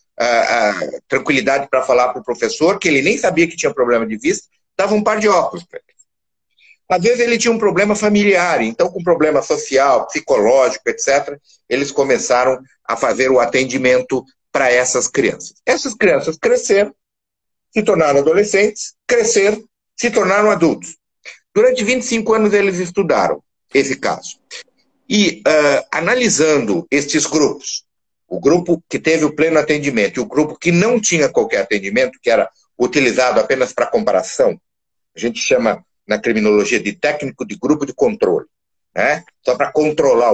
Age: 50-69